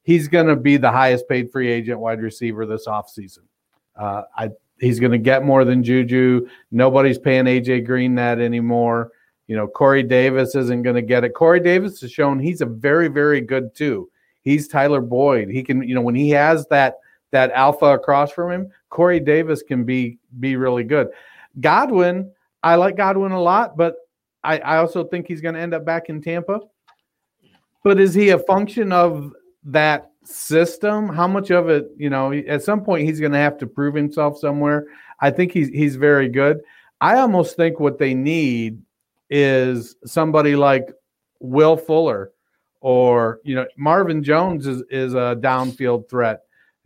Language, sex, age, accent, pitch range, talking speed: English, male, 40-59, American, 125-165 Hz, 180 wpm